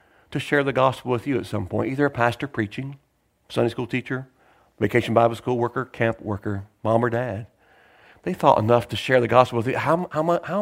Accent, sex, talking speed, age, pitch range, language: American, male, 210 wpm, 40-59, 110-170 Hz, English